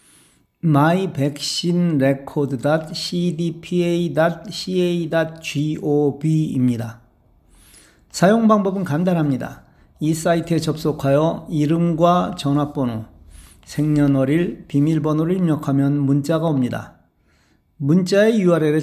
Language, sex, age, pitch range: Korean, male, 40-59, 135-170 Hz